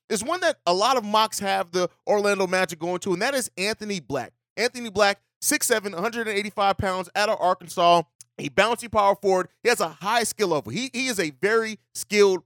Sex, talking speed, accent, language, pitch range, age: male, 200 wpm, American, English, 185-225 Hz, 30-49